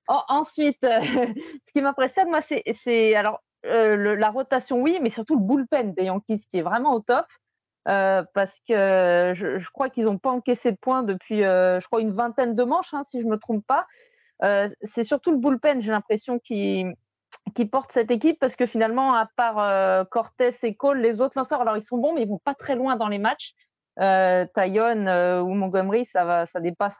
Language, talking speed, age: French, 220 wpm, 30-49